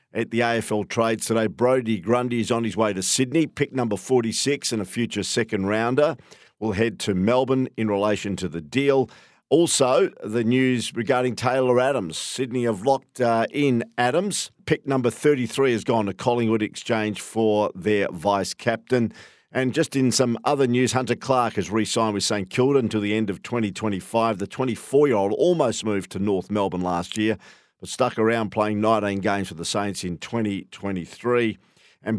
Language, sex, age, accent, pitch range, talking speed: English, male, 50-69, Australian, 105-125 Hz, 175 wpm